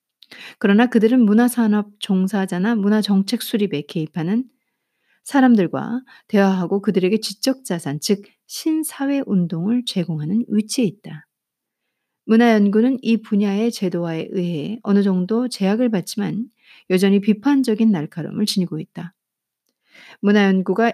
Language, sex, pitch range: Korean, female, 180-235 Hz